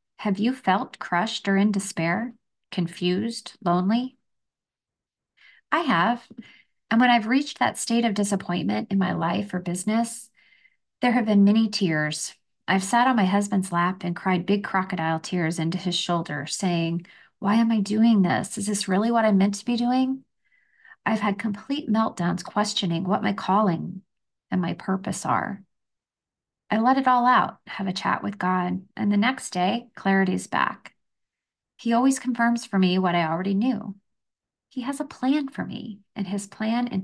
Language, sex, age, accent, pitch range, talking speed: English, female, 30-49, American, 185-225 Hz, 170 wpm